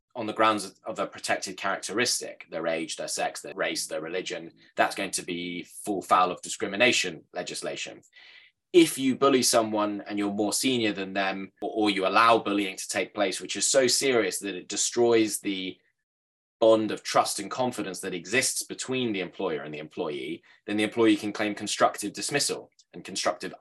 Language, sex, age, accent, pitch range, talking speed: English, male, 10-29, British, 90-110 Hz, 180 wpm